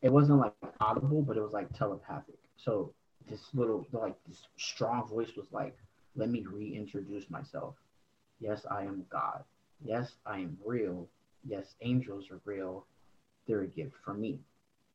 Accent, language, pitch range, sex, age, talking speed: American, English, 110-145 Hz, male, 20-39, 155 wpm